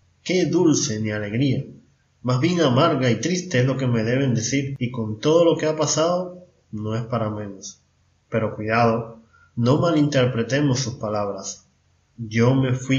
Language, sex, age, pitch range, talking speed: Spanish, male, 20-39, 110-145 Hz, 160 wpm